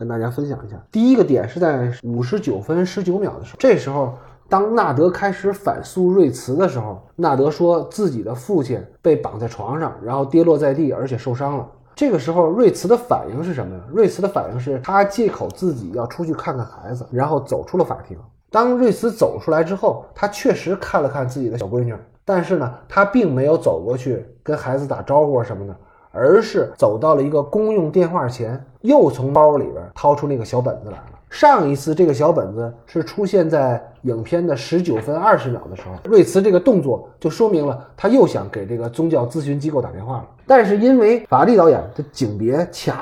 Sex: male